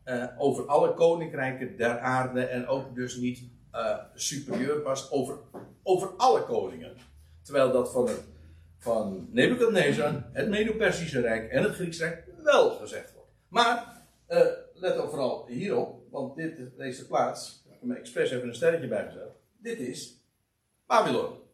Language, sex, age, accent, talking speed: Dutch, male, 60-79, Dutch, 155 wpm